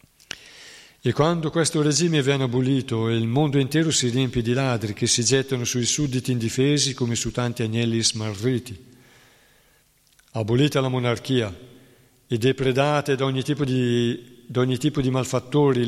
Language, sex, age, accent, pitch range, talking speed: Italian, male, 50-69, native, 115-135 Hz, 145 wpm